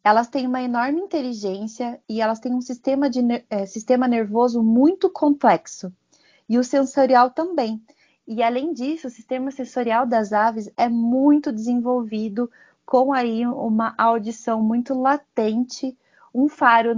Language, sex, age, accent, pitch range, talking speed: Portuguese, female, 20-39, Brazilian, 220-265 Hz, 140 wpm